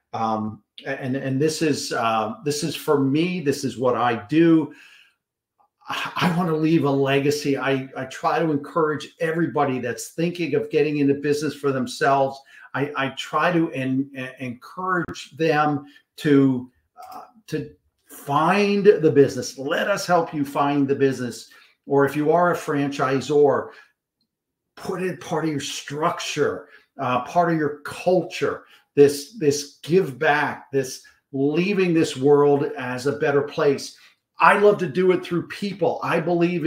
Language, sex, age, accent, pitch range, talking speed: English, male, 50-69, American, 140-170 Hz, 155 wpm